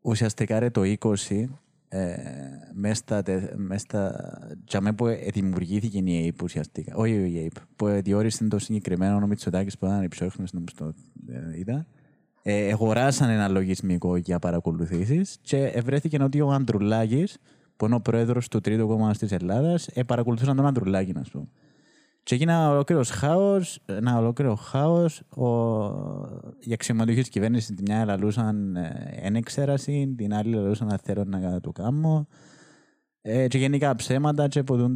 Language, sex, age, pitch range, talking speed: Greek, male, 20-39, 100-140 Hz, 135 wpm